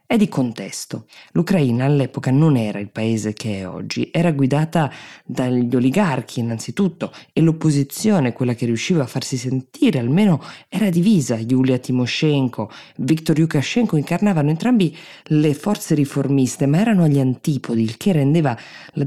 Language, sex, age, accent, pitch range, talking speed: Italian, female, 20-39, native, 120-155 Hz, 140 wpm